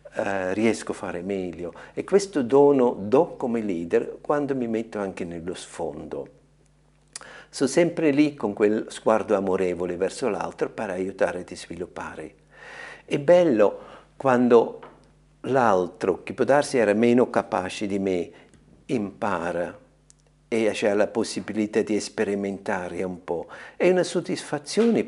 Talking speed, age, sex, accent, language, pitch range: 125 wpm, 50-69, male, native, Italian, 100-160 Hz